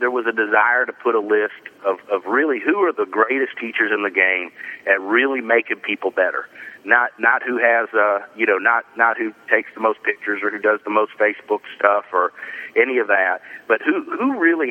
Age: 40-59